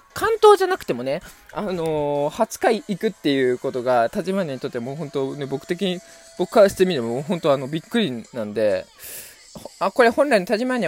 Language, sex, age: Japanese, male, 20-39